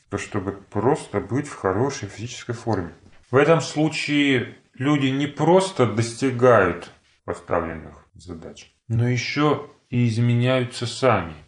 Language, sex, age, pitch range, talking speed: Russian, male, 30-49, 105-140 Hz, 115 wpm